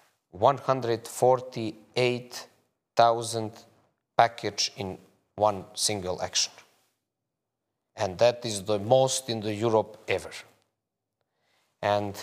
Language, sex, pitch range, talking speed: English, male, 95-115 Hz, 80 wpm